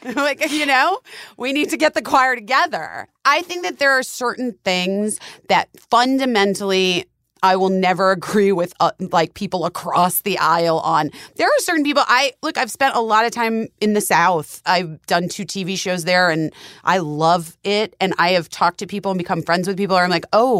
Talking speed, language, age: 205 wpm, English, 30-49